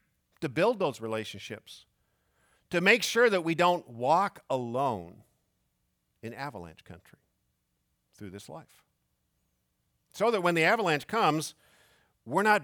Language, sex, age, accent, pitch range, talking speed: English, male, 50-69, American, 90-150 Hz, 125 wpm